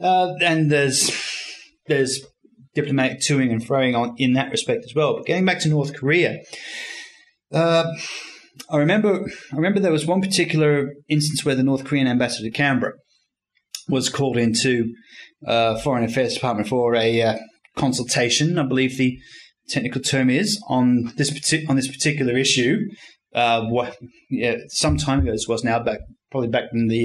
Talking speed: 165 wpm